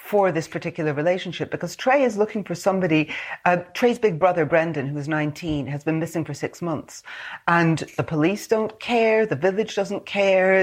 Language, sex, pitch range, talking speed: English, female, 155-200 Hz, 185 wpm